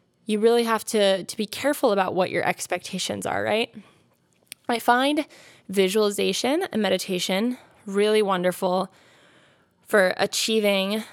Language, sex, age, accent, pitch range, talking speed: English, female, 10-29, American, 185-235 Hz, 120 wpm